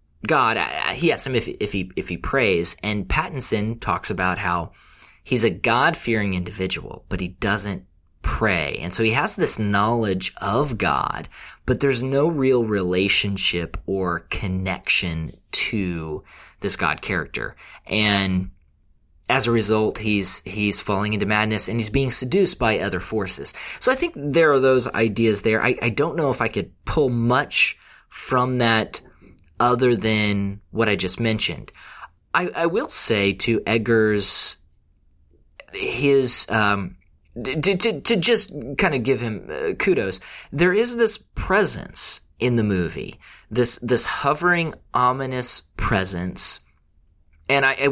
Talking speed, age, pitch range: 145 wpm, 30-49, 95-125 Hz